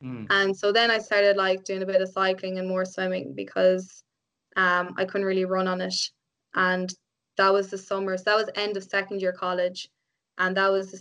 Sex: female